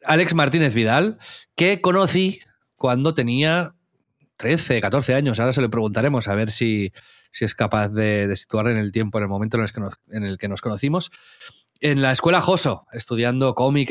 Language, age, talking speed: Spanish, 30-49, 175 wpm